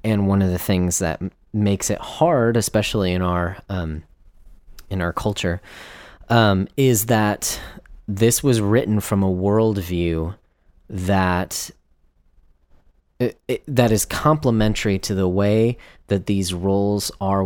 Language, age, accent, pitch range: English, 30-49, American, 85-100 Hz